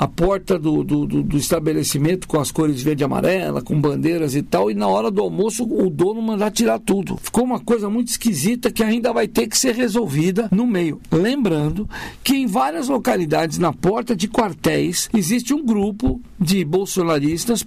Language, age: Portuguese, 60-79